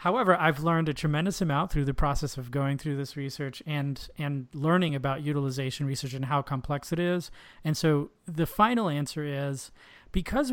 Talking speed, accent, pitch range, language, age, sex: 180 wpm, American, 135-160 Hz, English, 30-49, male